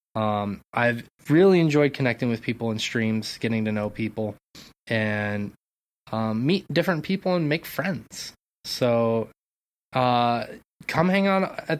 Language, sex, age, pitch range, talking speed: English, male, 20-39, 115-150 Hz, 135 wpm